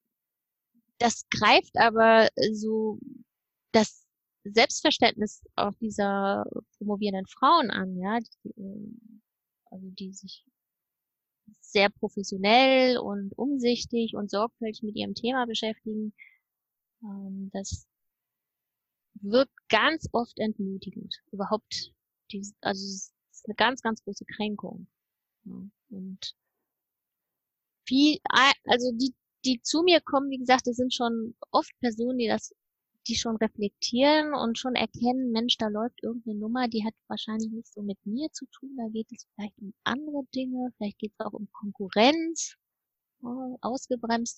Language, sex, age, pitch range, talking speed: German, female, 20-39, 210-250 Hz, 125 wpm